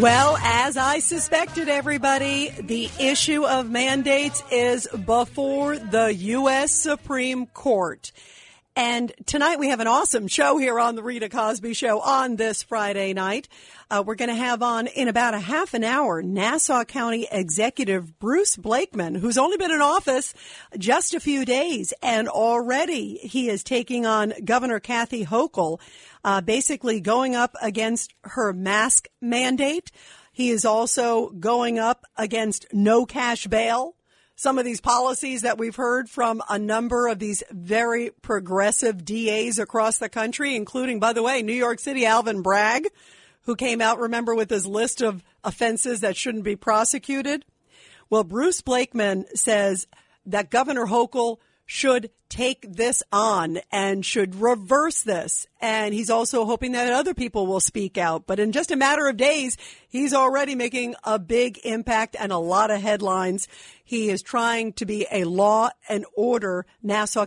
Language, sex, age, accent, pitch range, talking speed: English, female, 50-69, American, 215-260 Hz, 160 wpm